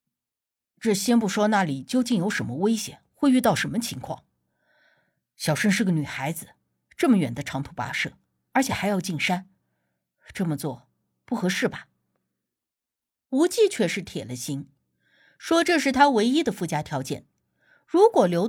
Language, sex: Chinese, female